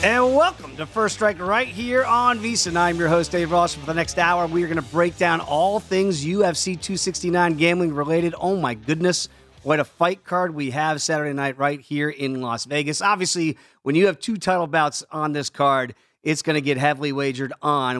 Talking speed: 215 wpm